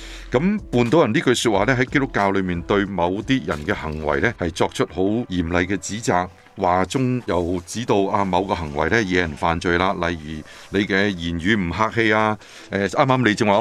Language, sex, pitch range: Chinese, male, 90-125 Hz